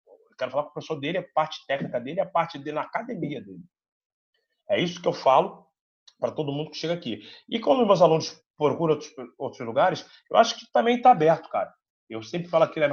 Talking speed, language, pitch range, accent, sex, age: 220 wpm, English, 160-195 Hz, Brazilian, male, 30-49